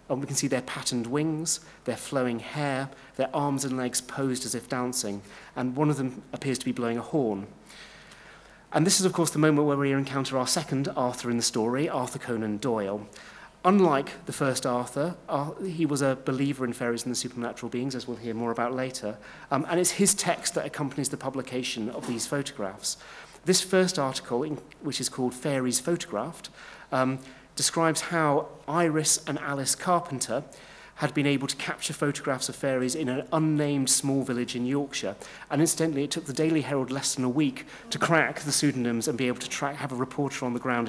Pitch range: 125-155 Hz